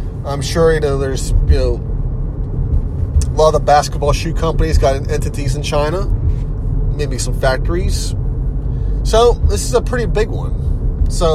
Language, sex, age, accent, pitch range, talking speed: English, male, 30-49, American, 90-150 Hz, 155 wpm